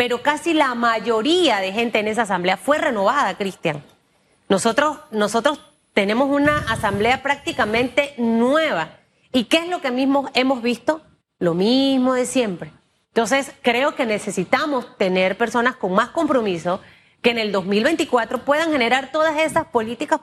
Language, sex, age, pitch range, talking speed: Spanish, female, 30-49, 215-285 Hz, 140 wpm